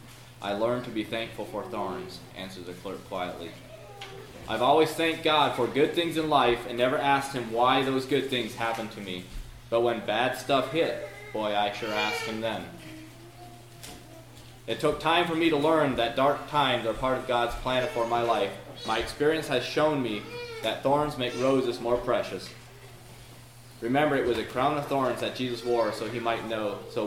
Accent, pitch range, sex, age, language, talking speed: American, 115-130 Hz, male, 20-39, English, 185 wpm